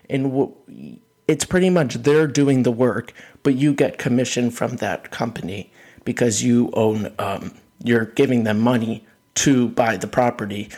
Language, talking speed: English, 150 wpm